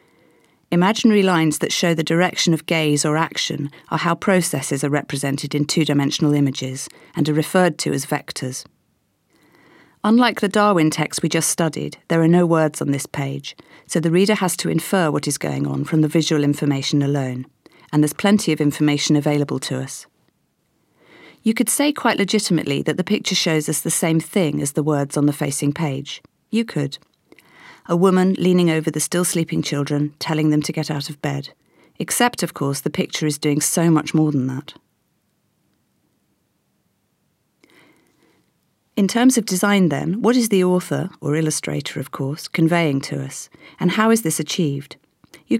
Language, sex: English, female